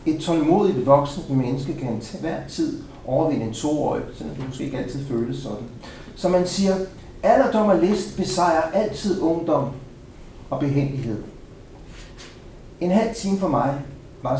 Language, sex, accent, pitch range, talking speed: Danish, male, native, 120-155 Hz, 150 wpm